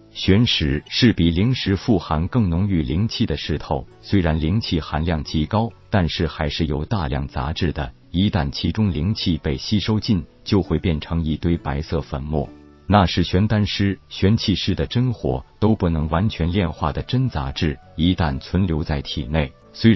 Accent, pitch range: native, 75-100 Hz